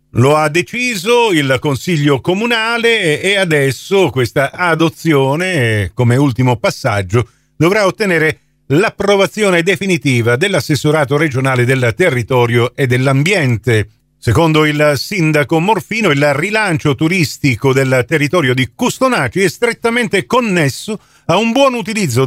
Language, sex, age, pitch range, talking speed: Italian, male, 50-69, 130-195 Hz, 110 wpm